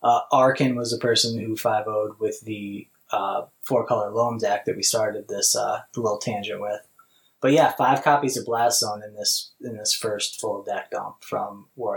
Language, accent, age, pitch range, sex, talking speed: English, American, 20-39, 110-140 Hz, male, 195 wpm